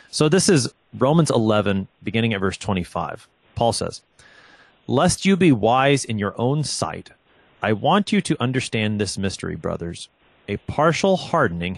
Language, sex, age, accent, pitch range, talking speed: English, male, 30-49, American, 100-135 Hz, 155 wpm